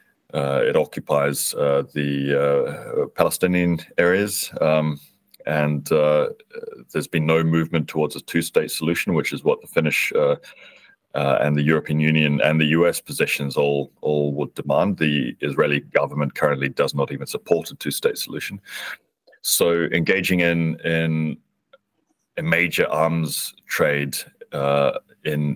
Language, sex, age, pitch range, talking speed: Finnish, male, 30-49, 70-85 Hz, 140 wpm